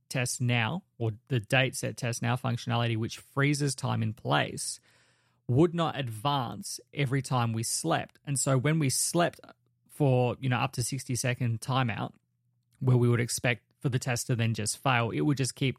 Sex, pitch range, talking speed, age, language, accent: male, 115-135 Hz, 185 wpm, 20-39, English, Australian